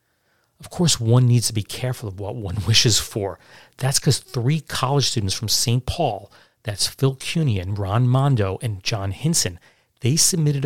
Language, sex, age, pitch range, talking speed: English, male, 40-59, 110-135 Hz, 170 wpm